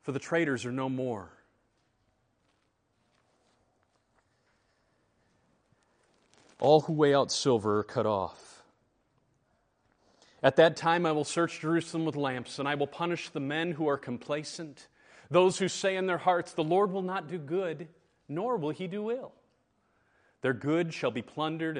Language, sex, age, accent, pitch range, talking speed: English, male, 30-49, American, 125-175 Hz, 150 wpm